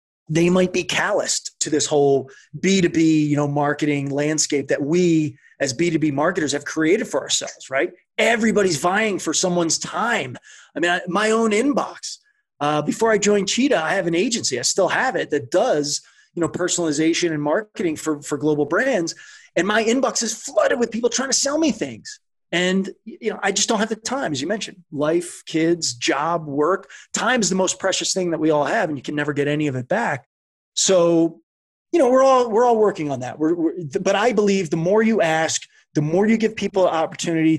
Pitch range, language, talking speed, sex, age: 145-195 Hz, English, 205 wpm, male, 30-49